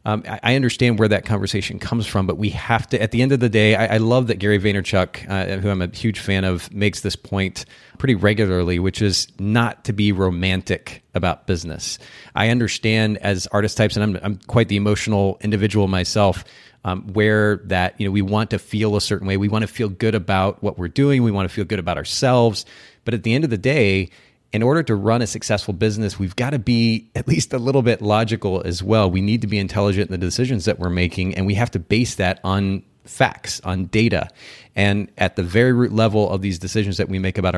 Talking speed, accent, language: 230 wpm, American, English